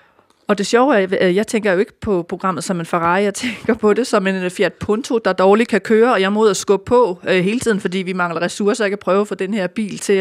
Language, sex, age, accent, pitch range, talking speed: Danish, female, 30-49, native, 185-225 Hz, 290 wpm